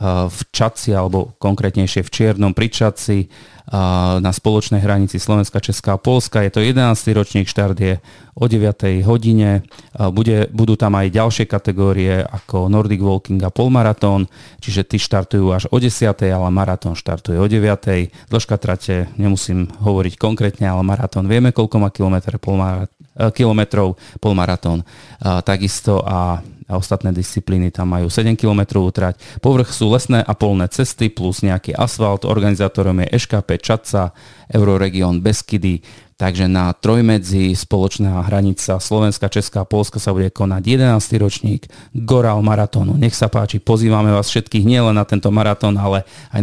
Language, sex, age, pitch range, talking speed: Slovak, male, 30-49, 95-110 Hz, 145 wpm